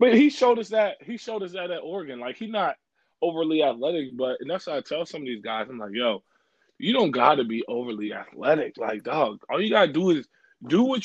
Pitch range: 120-155 Hz